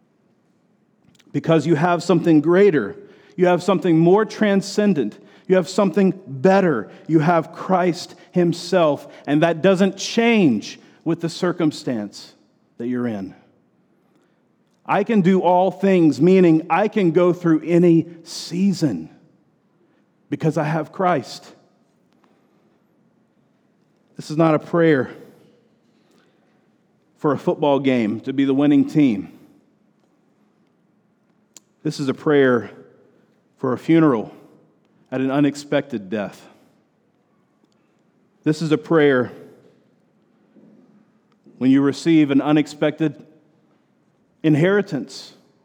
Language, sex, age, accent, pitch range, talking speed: English, male, 40-59, American, 150-185 Hz, 105 wpm